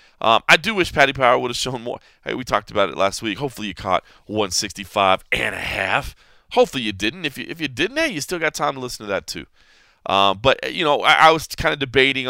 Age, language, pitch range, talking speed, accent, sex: 20-39, English, 95-130 Hz, 255 wpm, American, male